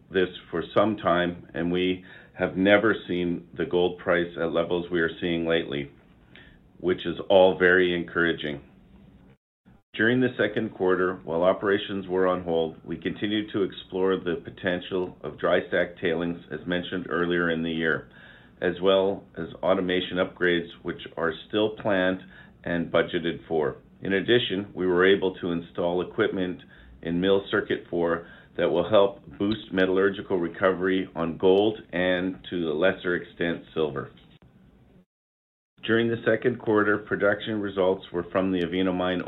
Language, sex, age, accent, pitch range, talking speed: English, male, 50-69, American, 85-95 Hz, 150 wpm